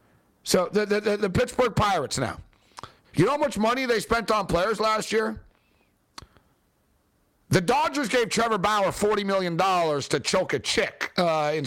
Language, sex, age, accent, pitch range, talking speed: English, male, 60-79, American, 185-230 Hz, 165 wpm